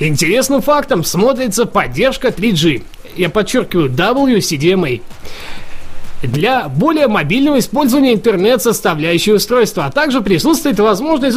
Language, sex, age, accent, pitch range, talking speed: Russian, male, 20-39, native, 170-275 Hz, 95 wpm